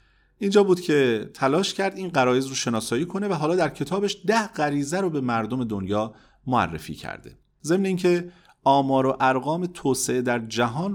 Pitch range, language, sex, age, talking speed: 115-160 Hz, Persian, male, 40-59, 165 wpm